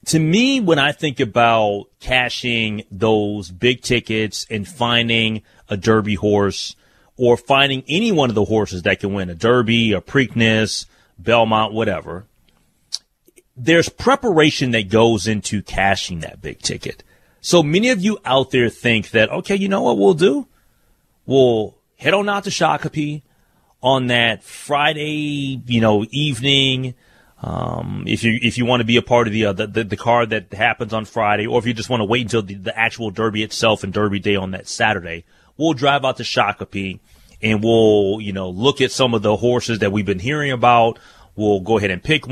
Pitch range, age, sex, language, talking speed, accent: 105-140 Hz, 30-49, male, English, 185 wpm, American